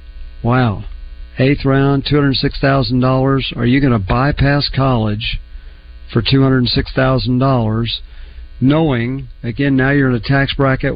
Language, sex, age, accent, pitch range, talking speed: English, male, 50-69, American, 115-145 Hz, 110 wpm